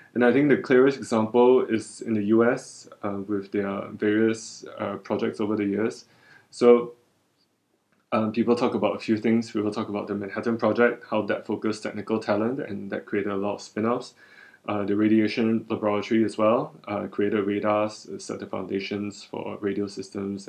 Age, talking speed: 20-39, 175 wpm